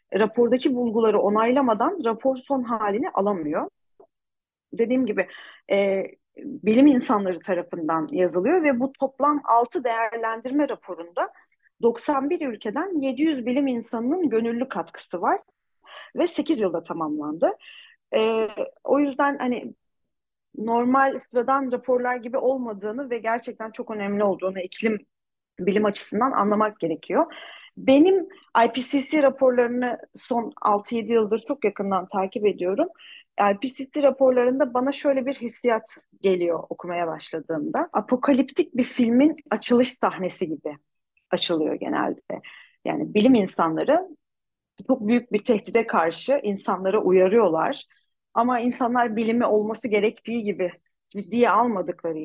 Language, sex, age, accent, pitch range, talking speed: Turkish, female, 40-59, native, 205-275 Hz, 110 wpm